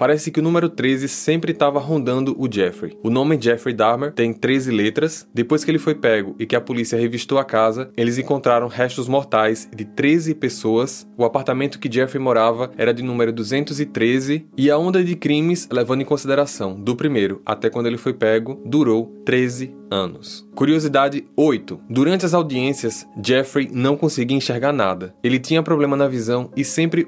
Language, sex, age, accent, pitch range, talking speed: Portuguese, male, 20-39, Brazilian, 125-155 Hz, 180 wpm